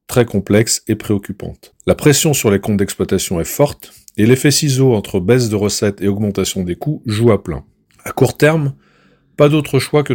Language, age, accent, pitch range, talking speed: French, 40-59, French, 105-135 Hz, 195 wpm